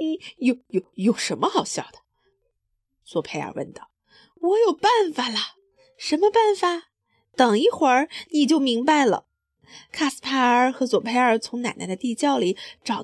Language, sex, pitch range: Chinese, female, 235-355 Hz